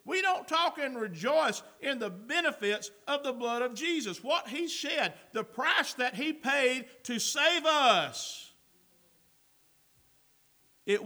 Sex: male